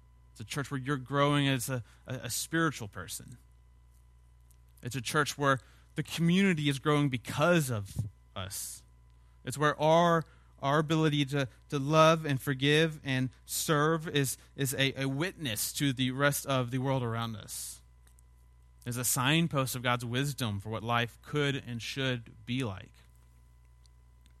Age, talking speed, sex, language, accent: 30-49, 150 wpm, male, English, American